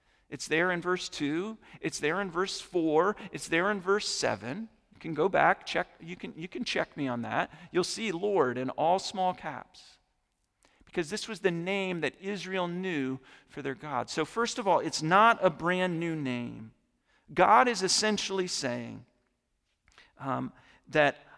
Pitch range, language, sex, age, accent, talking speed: 135-195 Hz, English, male, 40-59, American, 175 wpm